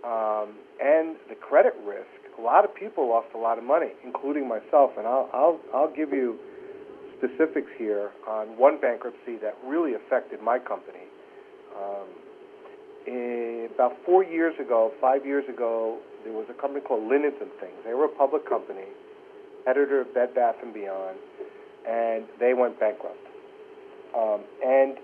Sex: male